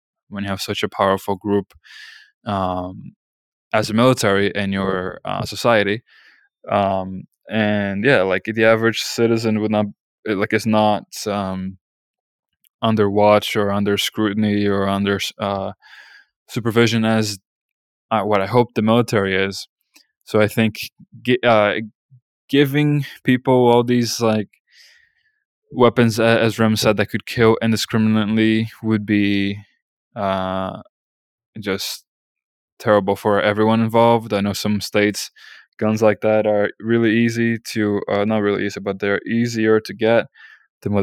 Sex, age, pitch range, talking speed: male, 20-39, 100-115 Hz, 135 wpm